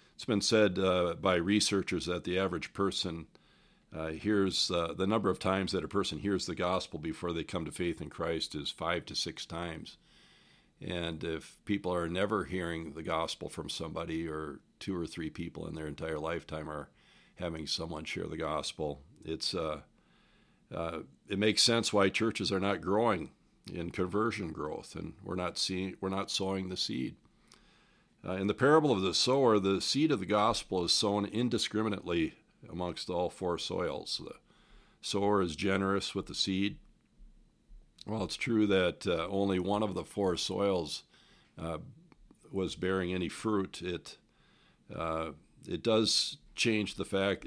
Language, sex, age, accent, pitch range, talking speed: English, male, 50-69, American, 85-100 Hz, 170 wpm